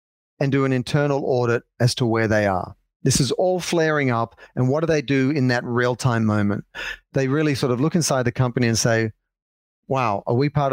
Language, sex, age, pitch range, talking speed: English, male, 40-59, 120-145 Hz, 215 wpm